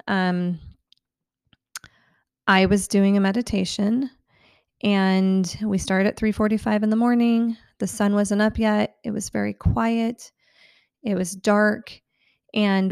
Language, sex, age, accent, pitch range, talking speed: English, female, 30-49, American, 190-215 Hz, 130 wpm